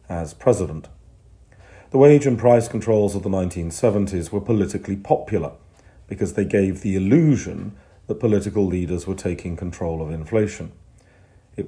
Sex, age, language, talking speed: male, 40-59, English, 140 wpm